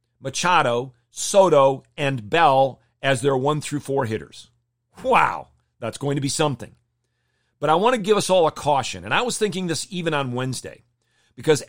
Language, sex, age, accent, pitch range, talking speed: English, male, 40-59, American, 120-160 Hz, 175 wpm